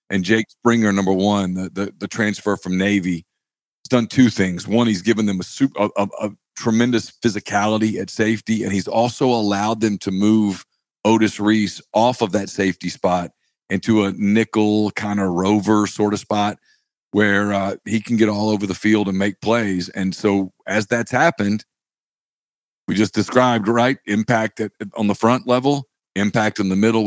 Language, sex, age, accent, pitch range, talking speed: English, male, 40-59, American, 100-115 Hz, 180 wpm